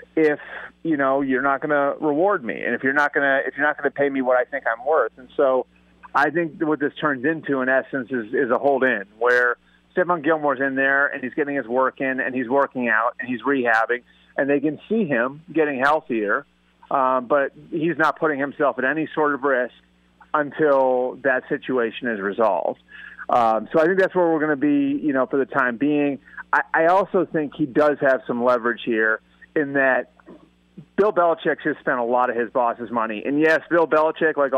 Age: 30-49